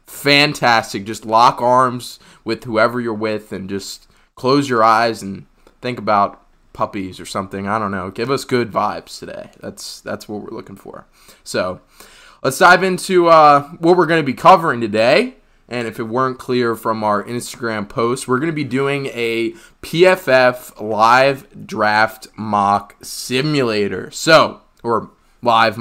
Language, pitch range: English, 110-135 Hz